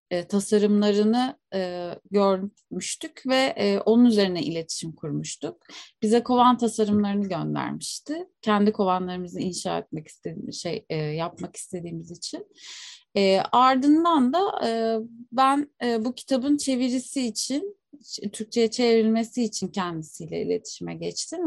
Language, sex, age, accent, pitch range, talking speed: Turkish, female, 30-49, native, 190-255 Hz, 90 wpm